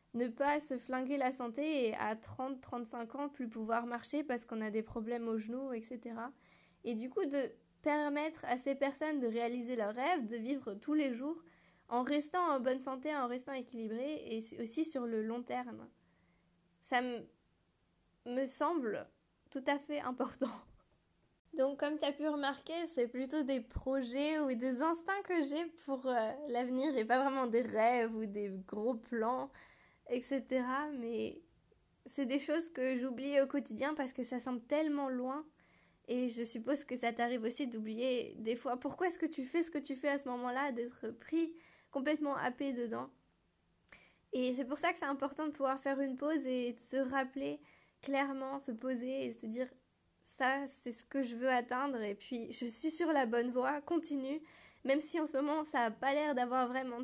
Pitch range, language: 240-285 Hz, French